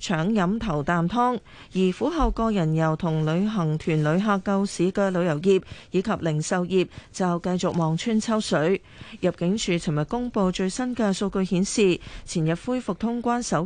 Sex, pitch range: female, 170-220 Hz